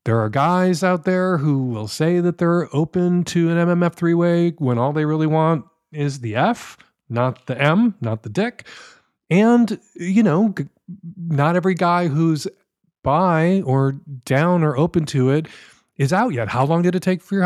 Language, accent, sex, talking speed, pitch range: English, American, male, 185 wpm, 135-195 Hz